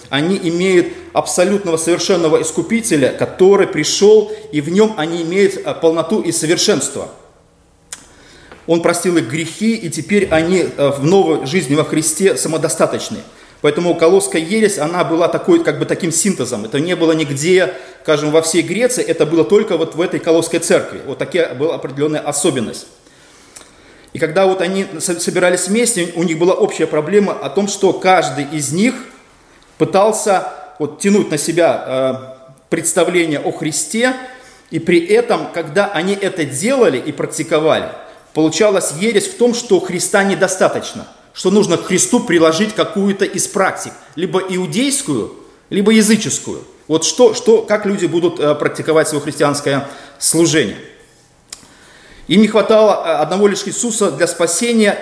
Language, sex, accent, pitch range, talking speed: Russian, male, native, 160-200 Hz, 140 wpm